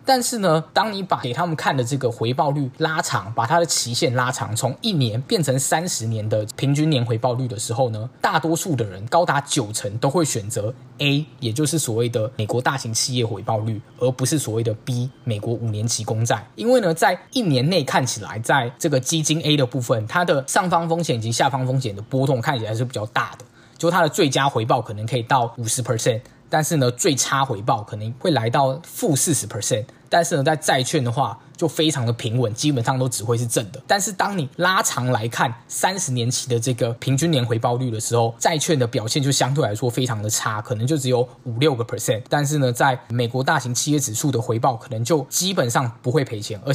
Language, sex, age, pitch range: Chinese, male, 20-39, 120-155 Hz